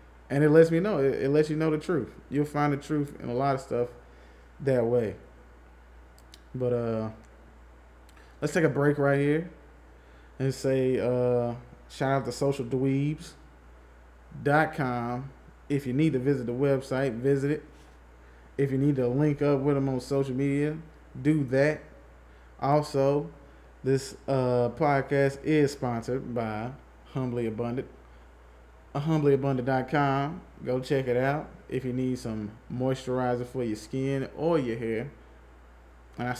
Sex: male